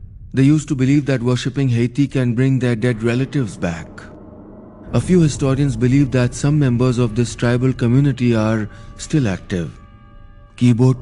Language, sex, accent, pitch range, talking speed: Hindi, male, native, 105-130 Hz, 160 wpm